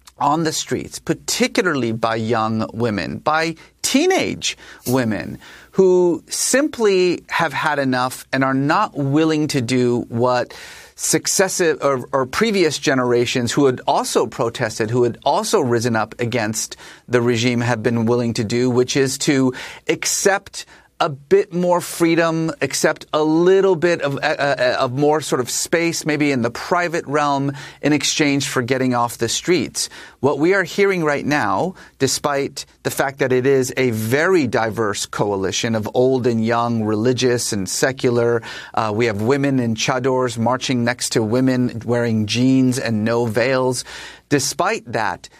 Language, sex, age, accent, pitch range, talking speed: English, male, 30-49, American, 120-160 Hz, 155 wpm